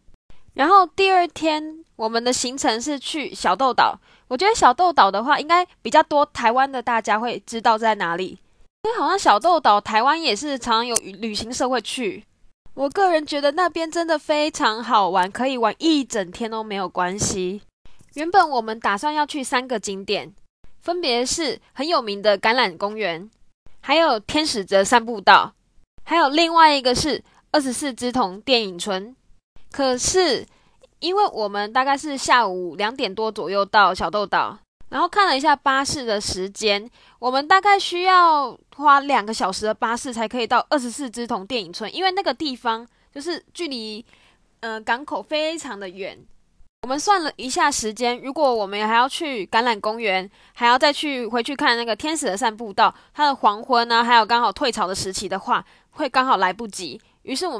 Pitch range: 215-300 Hz